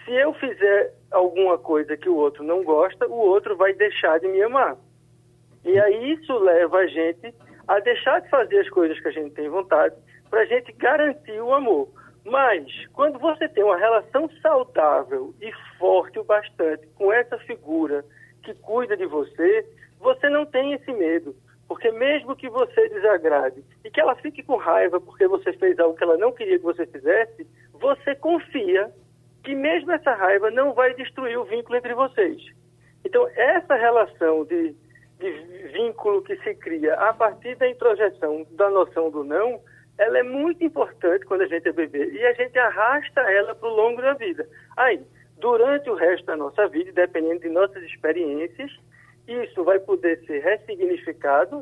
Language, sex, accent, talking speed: Portuguese, male, Brazilian, 175 wpm